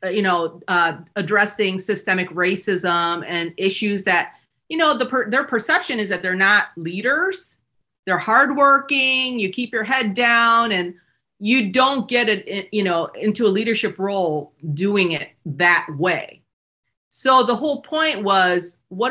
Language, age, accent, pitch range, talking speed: English, 40-59, American, 175-220 Hz, 150 wpm